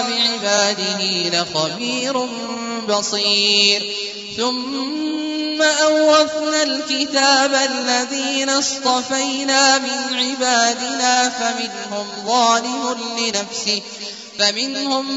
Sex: male